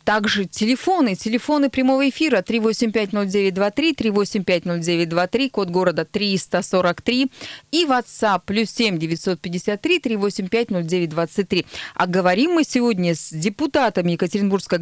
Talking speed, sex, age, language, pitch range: 95 wpm, female, 30-49, Russian, 185-245 Hz